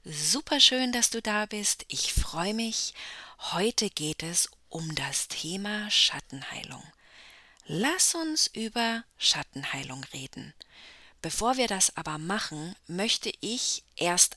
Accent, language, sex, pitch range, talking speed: German, English, female, 165-230 Hz, 115 wpm